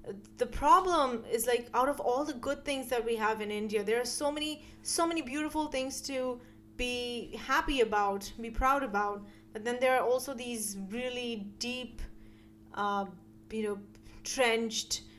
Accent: Indian